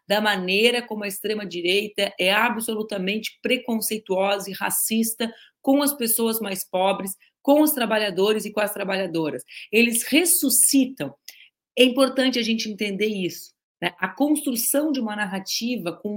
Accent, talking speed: Brazilian, 135 wpm